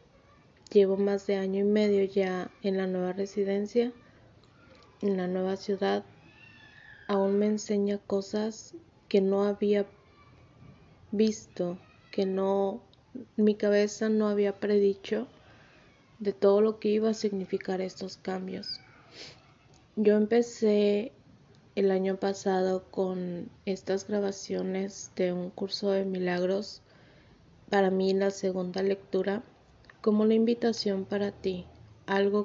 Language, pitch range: Spanish, 190-205 Hz